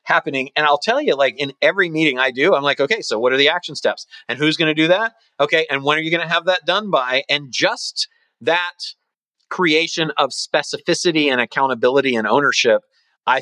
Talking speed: 215 wpm